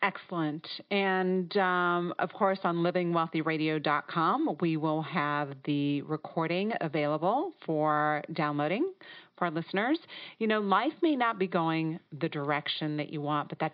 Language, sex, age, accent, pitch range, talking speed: English, female, 40-59, American, 155-185 Hz, 150 wpm